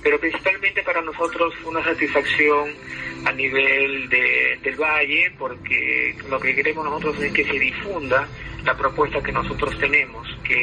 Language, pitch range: Spanish, 135-160 Hz